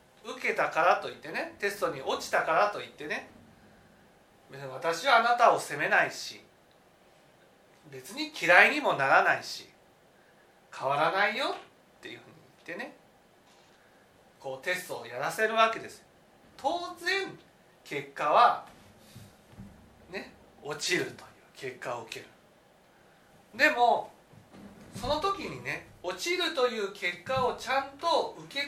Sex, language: male, Japanese